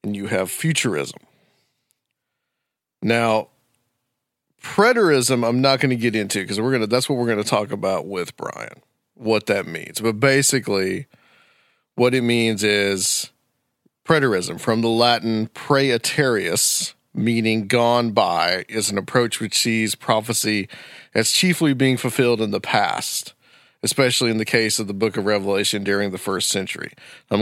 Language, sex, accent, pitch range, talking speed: English, male, American, 105-125 Hz, 150 wpm